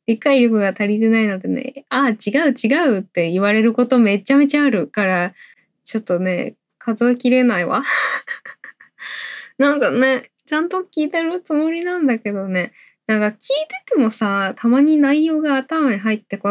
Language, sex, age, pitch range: Japanese, female, 10-29, 195-280 Hz